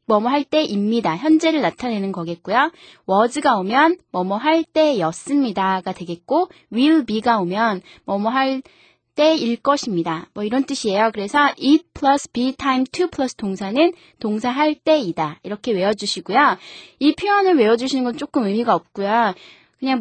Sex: female